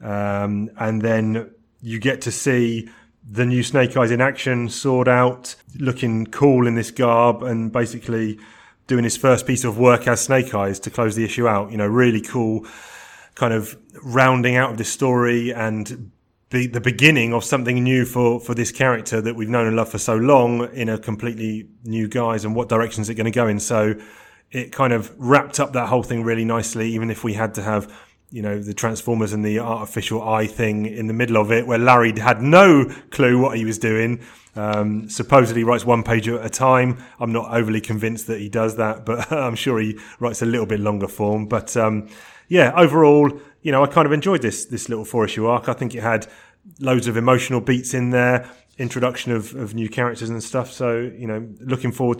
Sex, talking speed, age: male, 210 wpm, 30-49